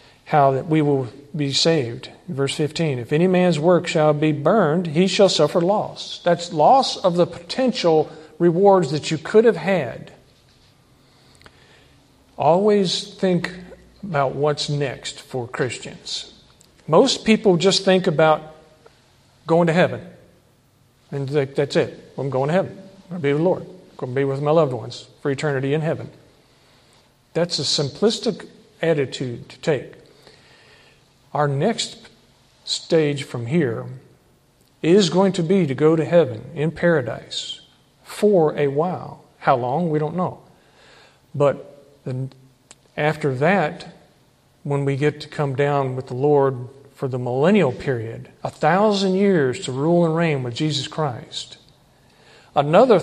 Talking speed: 145 wpm